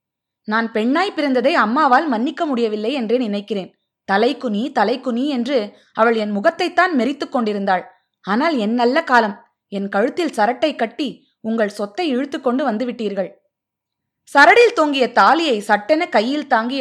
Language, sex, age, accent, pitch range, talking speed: Tamil, female, 20-39, native, 215-295 Hz, 120 wpm